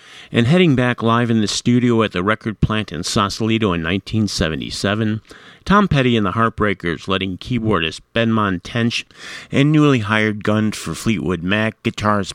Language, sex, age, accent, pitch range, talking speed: English, male, 50-69, American, 105-125 Hz, 155 wpm